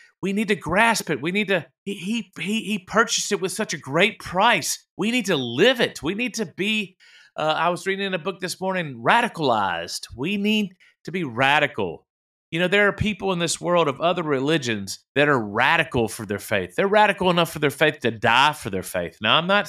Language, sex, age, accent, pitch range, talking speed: English, male, 40-59, American, 120-185 Hz, 225 wpm